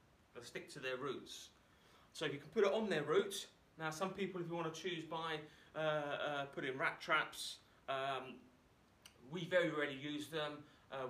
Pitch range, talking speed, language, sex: 130-170 Hz, 185 wpm, English, male